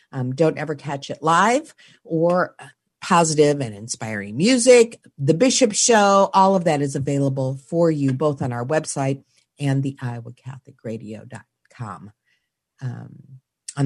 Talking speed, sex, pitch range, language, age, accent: 125 wpm, female, 140-200 Hz, English, 50-69, American